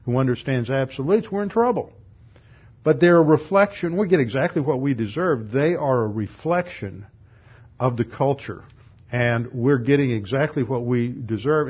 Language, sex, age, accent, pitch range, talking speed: English, male, 50-69, American, 115-135 Hz, 155 wpm